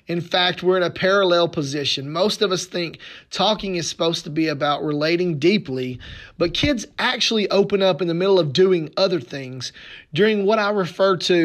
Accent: American